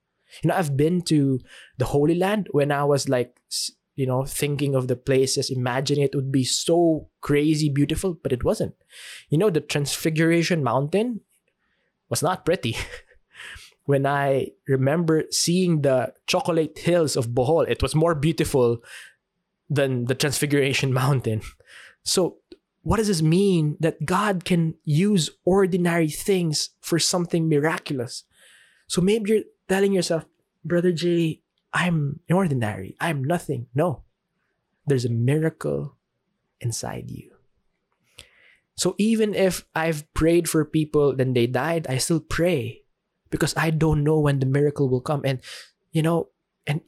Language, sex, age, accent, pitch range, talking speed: English, male, 20-39, Filipino, 140-180 Hz, 140 wpm